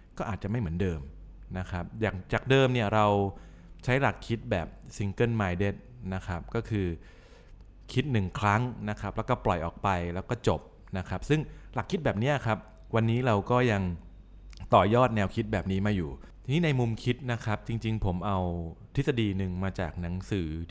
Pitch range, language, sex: 90-115 Hz, Thai, male